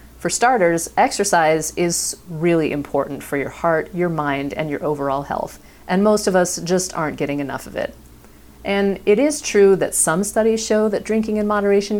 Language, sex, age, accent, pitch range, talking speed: English, female, 40-59, American, 140-190 Hz, 185 wpm